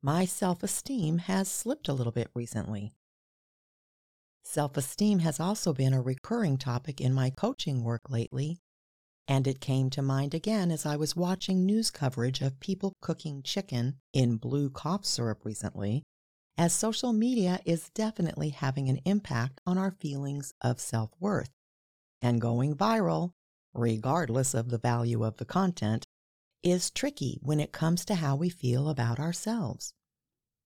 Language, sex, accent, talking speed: English, female, American, 145 wpm